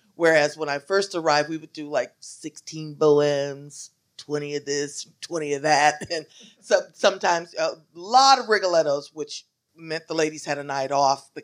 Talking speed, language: 175 wpm, English